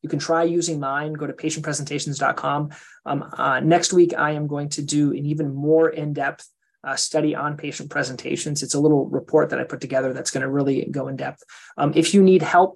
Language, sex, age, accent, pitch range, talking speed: English, male, 20-39, American, 140-165 Hz, 200 wpm